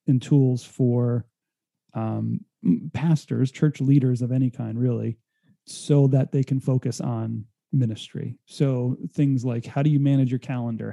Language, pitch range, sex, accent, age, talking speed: English, 120-140 Hz, male, American, 30-49, 150 wpm